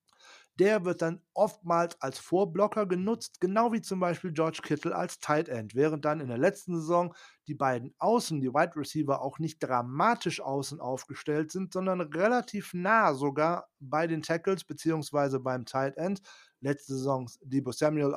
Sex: male